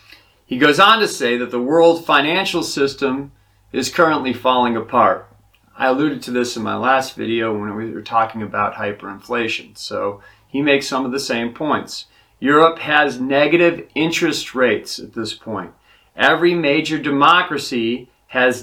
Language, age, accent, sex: English, 40-59, American, male